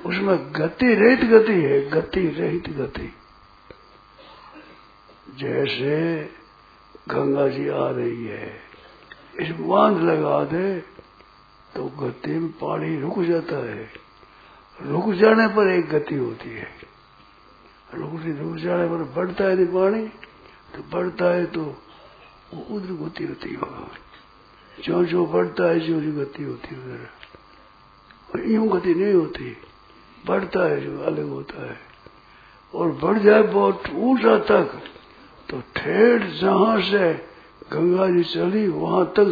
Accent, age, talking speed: native, 60-79, 125 wpm